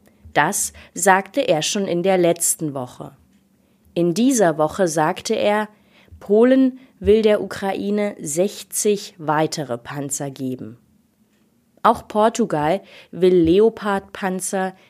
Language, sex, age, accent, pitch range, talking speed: German, female, 20-39, German, 160-210 Hz, 100 wpm